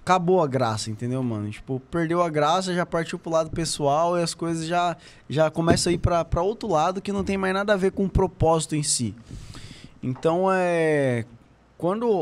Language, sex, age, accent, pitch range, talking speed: Portuguese, male, 20-39, Brazilian, 130-175 Hz, 200 wpm